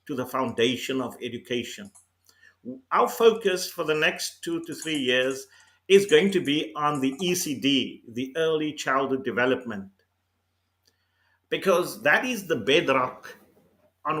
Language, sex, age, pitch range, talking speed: English, male, 50-69, 115-170 Hz, 130 wpm